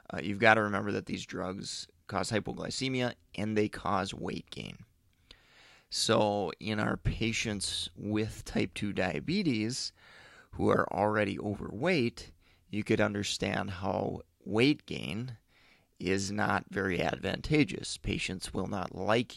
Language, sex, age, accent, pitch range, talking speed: English, male, 30-49, American, 95-115 Hz, 125 wpm